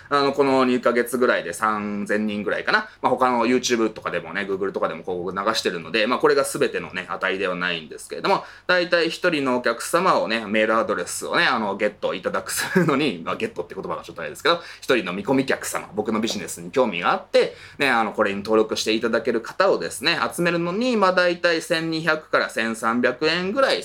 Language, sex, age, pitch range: Japanese, male, 20-39, 115-180 Hz